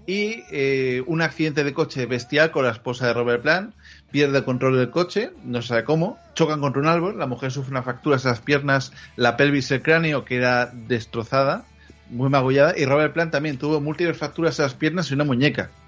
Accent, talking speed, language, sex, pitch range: Spanish, 210 wpm, Spanish, male, 120-155 Hz